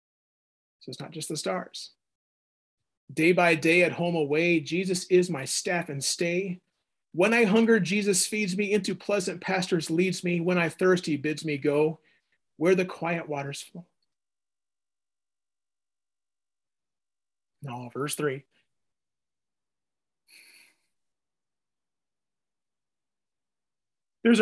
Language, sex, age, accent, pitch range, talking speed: English, male, 30-49, American, 145-195 Hz, 110 wpm